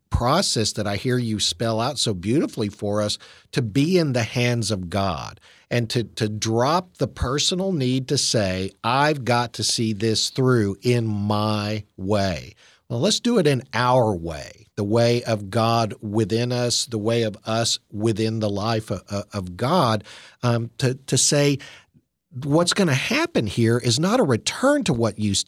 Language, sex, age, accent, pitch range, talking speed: English, male, 50-69, American, 110-135 Hz, 175 wpm